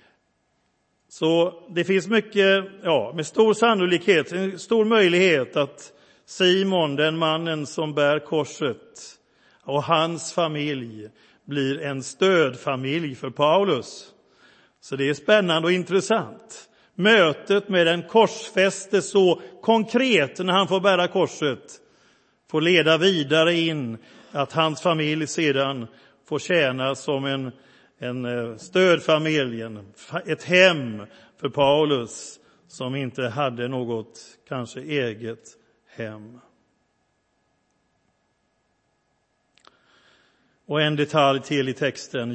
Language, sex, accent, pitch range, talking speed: Swedish, male, native, 135-190 Hz, 105 wpm